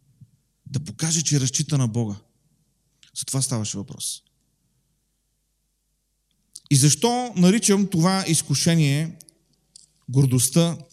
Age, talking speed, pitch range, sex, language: 40-59, 90 wpm, 125-155 Hz, male, Bulgarian